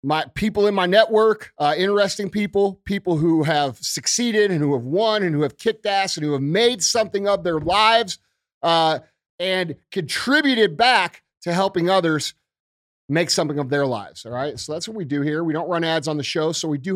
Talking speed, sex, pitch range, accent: 210 wpm, male, 145-200 Hz, American